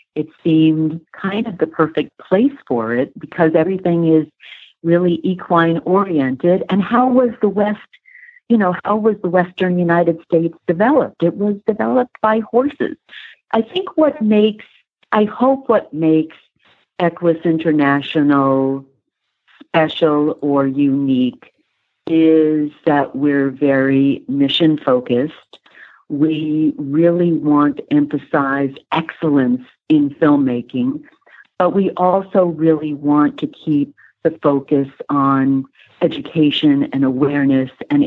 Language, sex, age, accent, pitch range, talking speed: English, female, 50-69, American, 140-180 Hz, 120 wpm